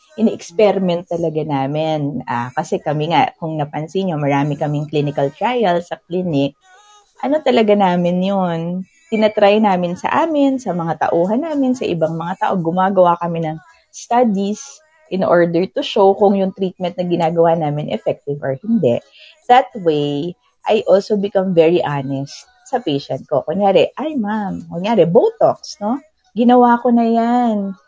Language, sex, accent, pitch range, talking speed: Filipino, female, native, 165-240 Hz, 150 wpm